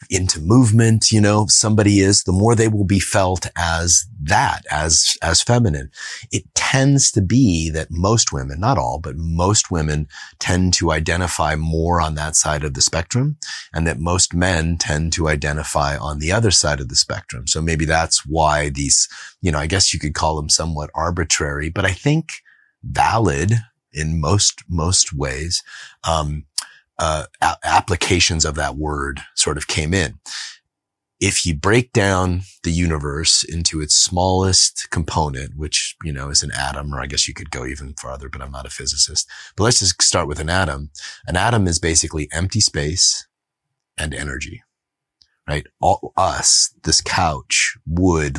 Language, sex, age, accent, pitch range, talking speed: English, male, 30-49, American, 75-95 Hz, 170 wpm